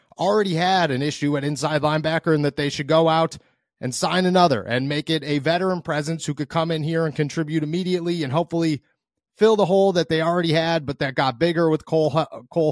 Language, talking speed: English, 215 wpm